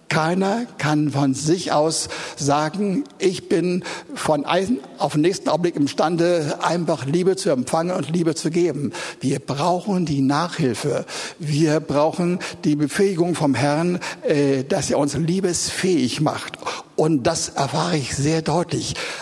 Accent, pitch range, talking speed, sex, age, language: German, 155-200 Hz, 140 wpm, male, 60-79, German